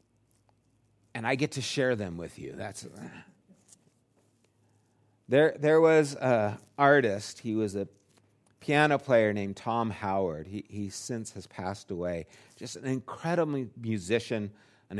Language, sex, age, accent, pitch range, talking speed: English, male, 50-69, American, 105-140 Hz, 130 wpm